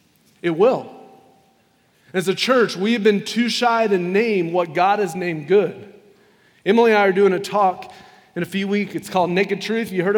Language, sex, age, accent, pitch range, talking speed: English, male, 30-49, American, 160-205 Hz, 200 wpm